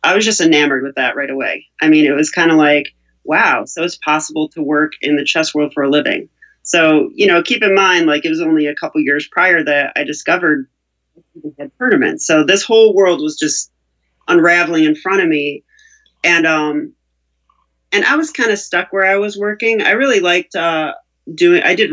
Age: 40-59